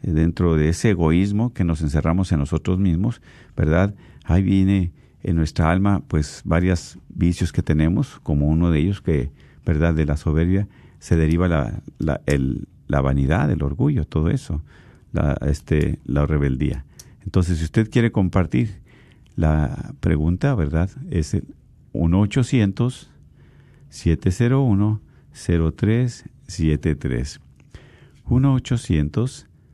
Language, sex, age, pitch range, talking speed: Spanish, male, 50-69, 80-105 Hz, 115 wpm